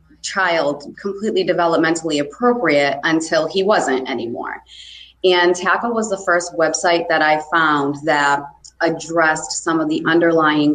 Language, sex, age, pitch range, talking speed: English, female, 30-49, 145-170 Hz, 130 wpm